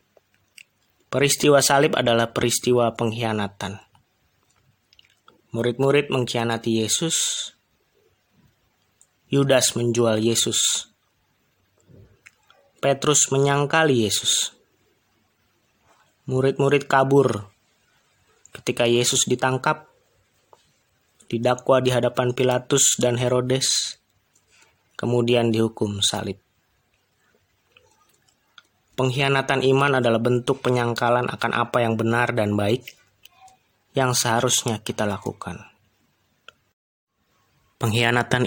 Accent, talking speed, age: native, 70 wpm, 20-39